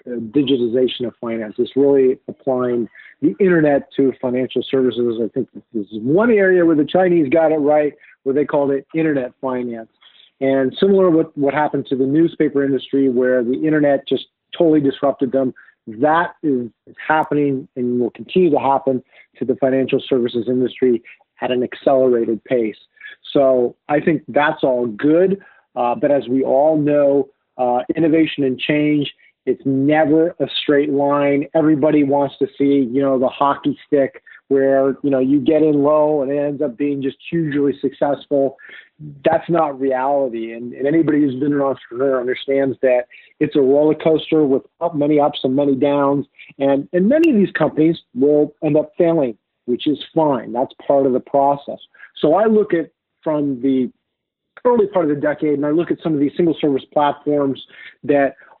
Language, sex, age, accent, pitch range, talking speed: English, male, 50-69, American, 130-155 Hz, 175 wpm